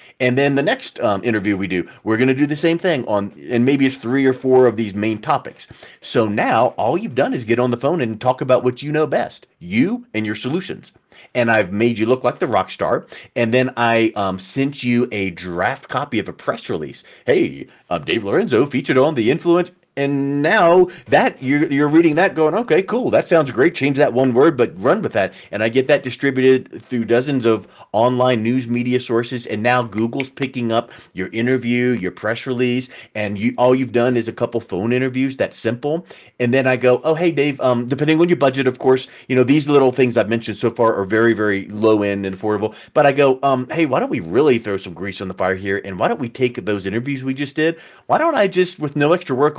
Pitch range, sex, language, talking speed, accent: 115-140 Hz, male, English, 235 wpm, American